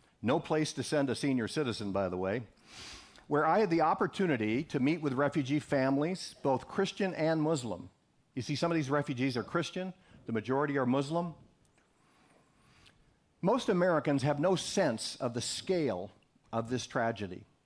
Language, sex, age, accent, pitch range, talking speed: English, male, 50-69, American, 115-155 Hz, 160 wpm